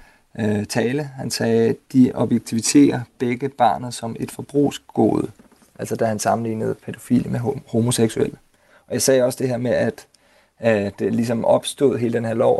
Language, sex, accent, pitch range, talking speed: Danish, male, native, 115-130 Hz, 160 wpm